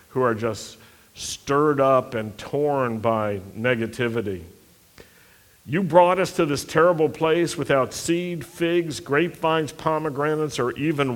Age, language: 60-79, English